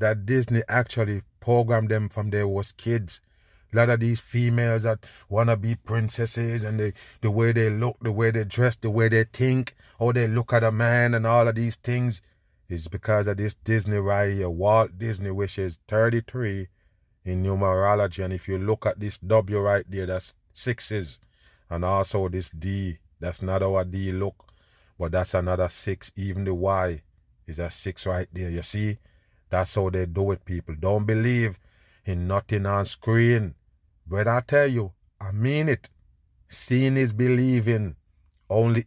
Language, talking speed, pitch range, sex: English, 180 wpm, 95-115 Hz, male